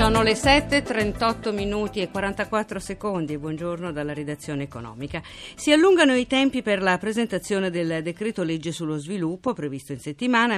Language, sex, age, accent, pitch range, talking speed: Italian, female, 50-69, native, 165-230 Hz, 145 wpm